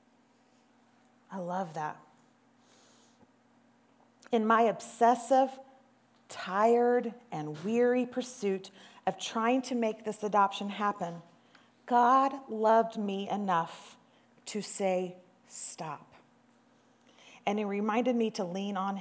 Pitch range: 195-250 Hz